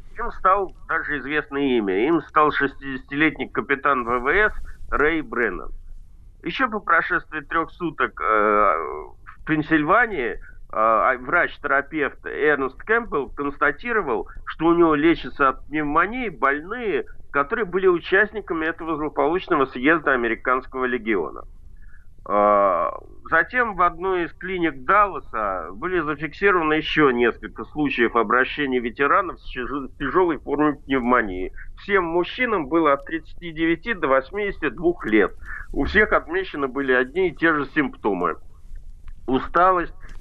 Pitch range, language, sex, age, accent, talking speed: 130-195 Hz, Russian, male, 50-69, native, 110 wpm